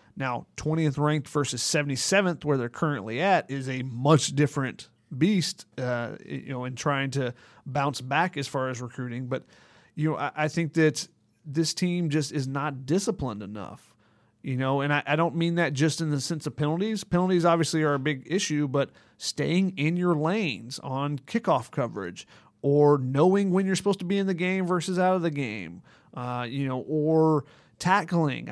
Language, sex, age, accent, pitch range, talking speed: English, male, 30-49, American, 140-170 Hz, 185 wpm